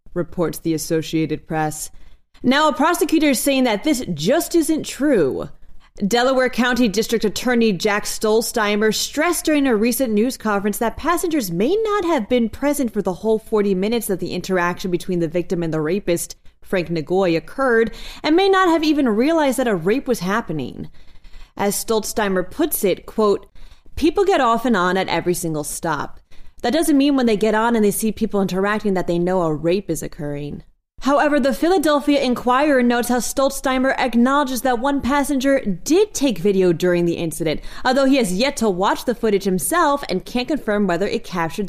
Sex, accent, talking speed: female, American, 180 wpm